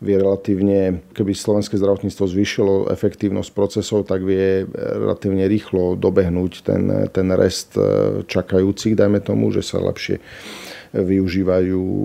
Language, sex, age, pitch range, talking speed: Slovak, male, 40-59, 95-100 Hz, 110 wpm